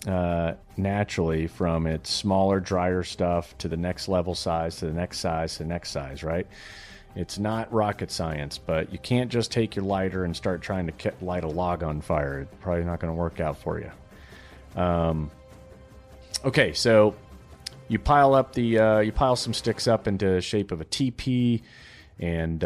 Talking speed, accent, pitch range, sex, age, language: 190 wpm, American, 85-105 Hz, male, 30-49, English